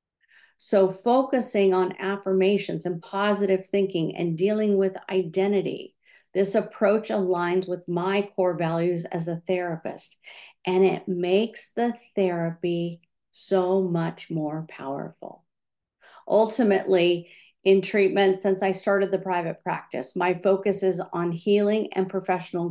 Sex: female